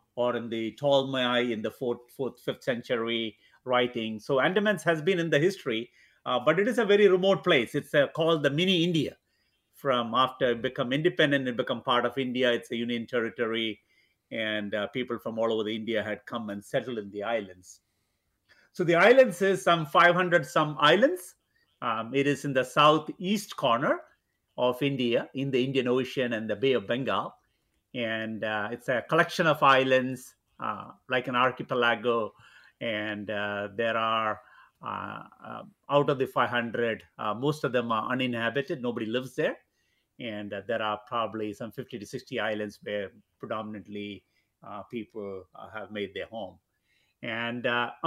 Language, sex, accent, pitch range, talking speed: English, male, Indian, 110-150 Hz, 170 wpm